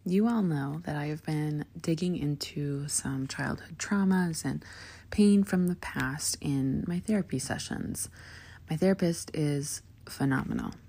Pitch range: 105-155 Hz